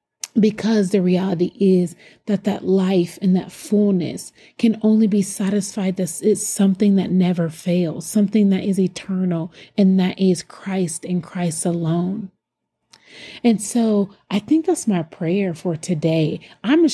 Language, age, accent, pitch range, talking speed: English, 30-49, American, 180-215 Hz, 150 wpm